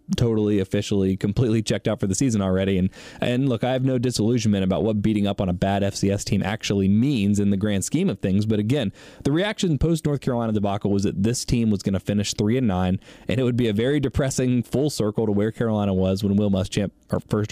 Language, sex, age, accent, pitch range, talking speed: English, male, 20-39, American, 100-130 Hz, 235 wpm